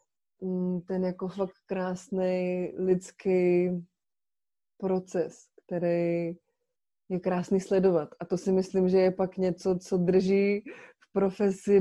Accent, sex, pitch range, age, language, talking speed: native, female, 180-205 Hz, 20-39, Czech, 105 wpm